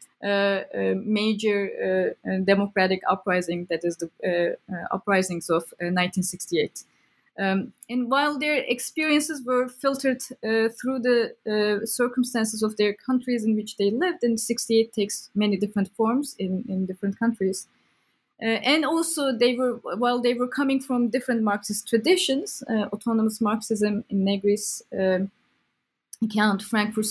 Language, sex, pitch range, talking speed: English, female, 195-250 Hz, 145 wpm